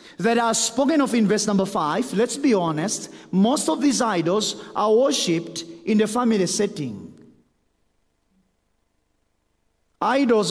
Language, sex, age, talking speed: English, male, 50-69, 125 wpm